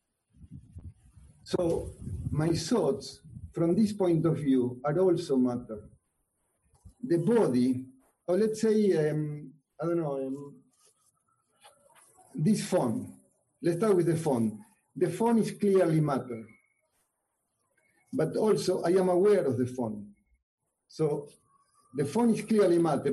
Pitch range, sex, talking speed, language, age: 125-185 Hz, male, 120 wpm, Romanian, 50-69